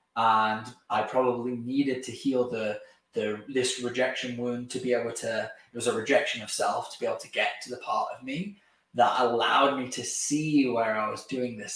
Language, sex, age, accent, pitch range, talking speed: English, male, 10-29, British, 120-140 Hz, 210 wpm